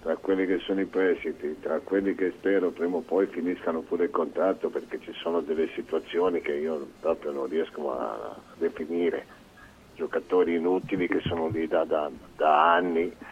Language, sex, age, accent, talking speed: Italian, male, 50-69, native, 170 wpm